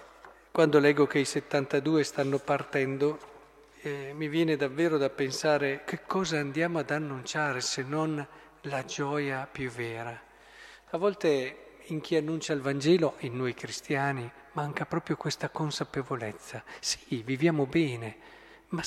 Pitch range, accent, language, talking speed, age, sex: 140-175 Hz, native, Italian, 135 wpm, 50-69, male